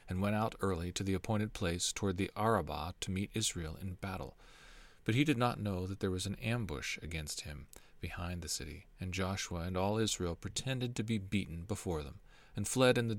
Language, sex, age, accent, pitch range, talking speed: English, male, 40-59, American, 95-115 Hz, 210 wpm